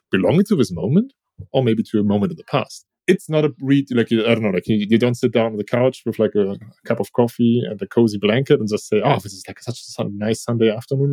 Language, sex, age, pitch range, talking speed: English, male, 20-39, 100-125 Hz, 270 wpm